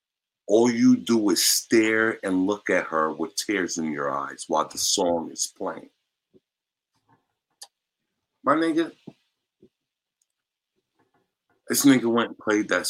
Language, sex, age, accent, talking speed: English, male, 50-69, American, 125 wpm